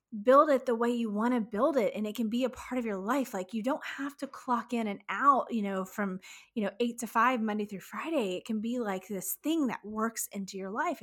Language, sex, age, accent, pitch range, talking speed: English, female, 20-39, American, 190-255 Hz, 265 wpm